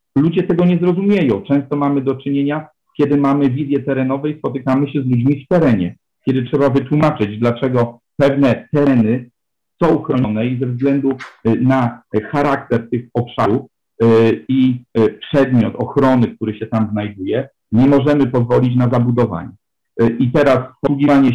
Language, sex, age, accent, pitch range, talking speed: Polish, male, 50-69, native, 120-145 Hz, 135 wpm